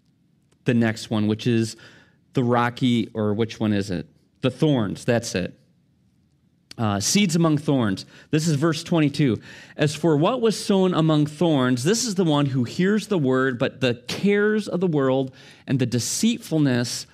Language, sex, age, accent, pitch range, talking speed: English, male, 30-49, American, 125-165 Hz, 170 wpm